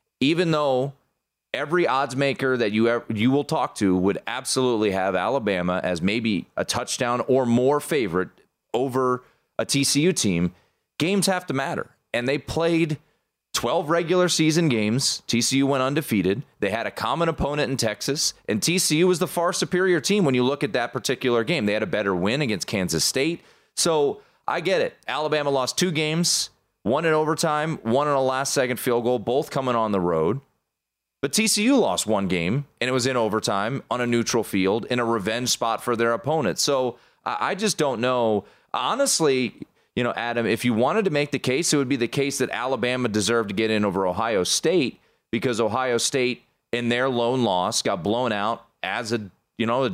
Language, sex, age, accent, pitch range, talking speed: English, male, 30-49, American, 115-160 Hz, 185 wpm